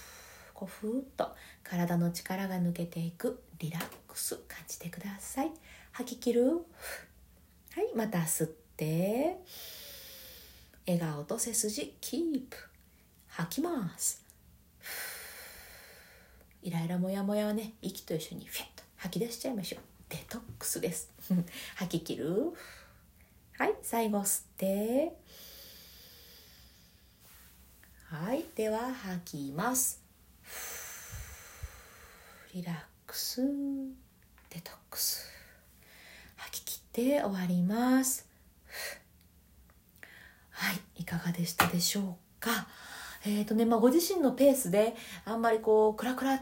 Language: Japanese